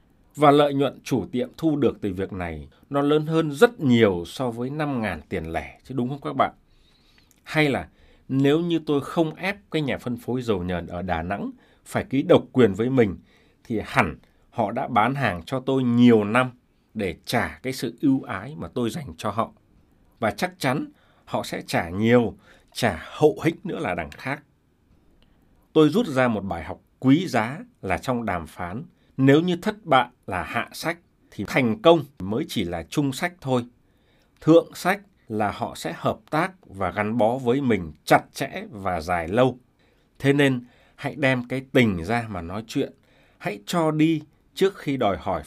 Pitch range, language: 105-155 Hz, Vietnamese